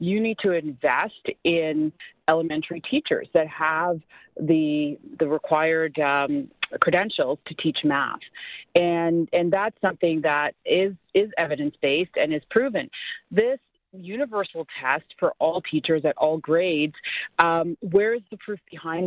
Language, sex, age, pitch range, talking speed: English, female, 30-49, 155-190 Hz, 140 wpm